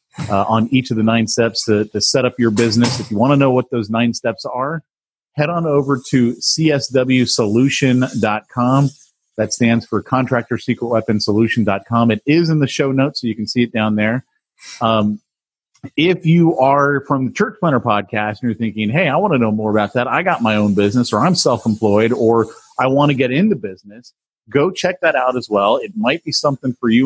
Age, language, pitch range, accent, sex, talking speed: 30-49, English, 110-135 Hz, American, male, 210 wpm